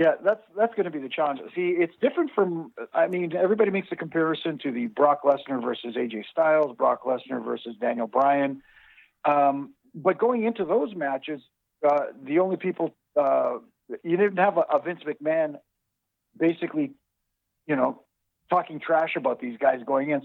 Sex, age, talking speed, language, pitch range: male, 50-69, 170 wpm, English, 135-175 Hz